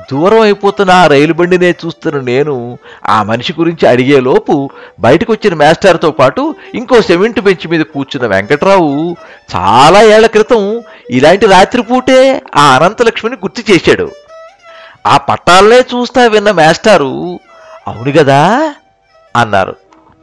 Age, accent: 60-79, native